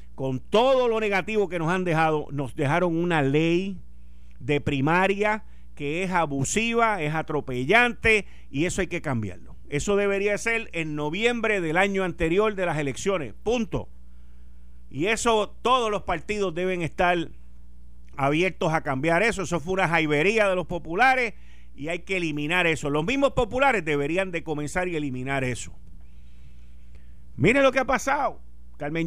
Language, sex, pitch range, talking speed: Spanish, male, 120-195 Hz, 155 wpm